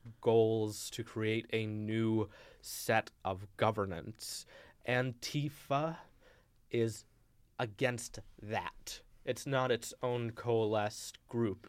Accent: American